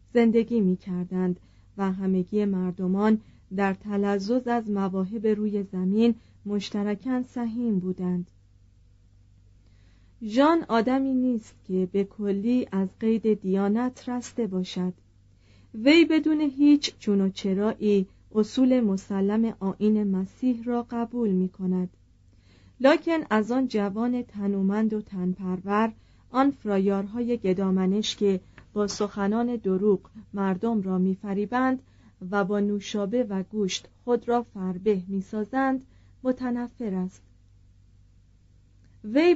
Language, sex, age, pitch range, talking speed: Persian, female, 40-59, 185-235 Hz, 105 wpm